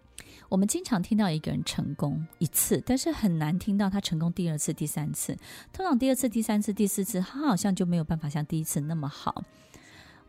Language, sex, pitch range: Chinese, female, 160-220 Hz